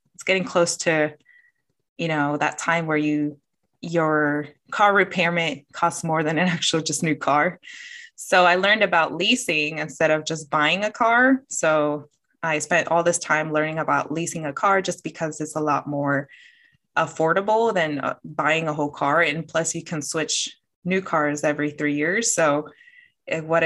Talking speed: 170 wpm